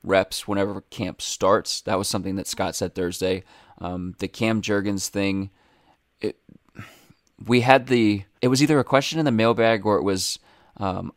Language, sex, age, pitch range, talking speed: English, male, 20-39, 95-115 Hz, 170 wpm